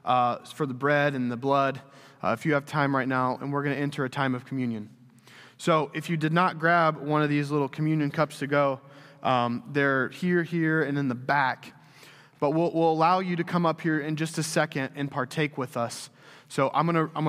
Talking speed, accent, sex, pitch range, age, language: 225 wpm, American, male, 130-155 Hz, 20-39, English